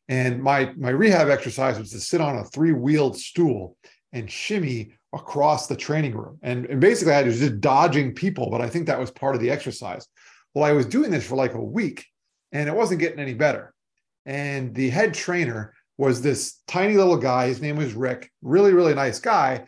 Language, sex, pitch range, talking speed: English, male, 130-170 Hz, 205 wpm